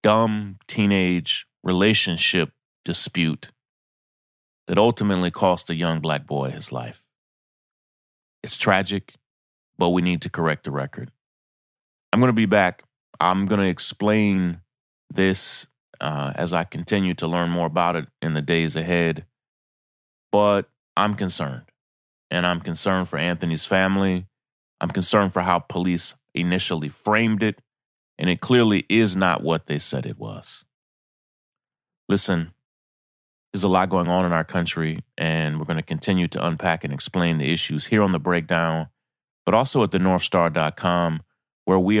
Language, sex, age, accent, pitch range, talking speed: English, male, 30-49, American, 80-95 Hz, 145 wpm